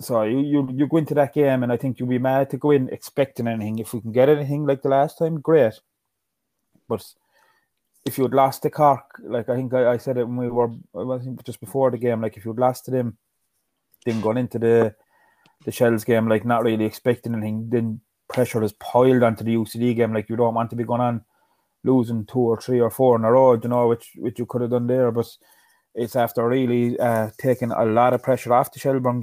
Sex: male